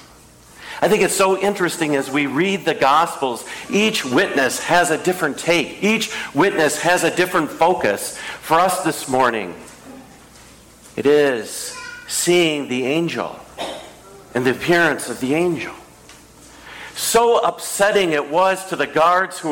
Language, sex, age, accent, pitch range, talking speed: English, male, 50-69, American, 150-205 Hz, 140 wpm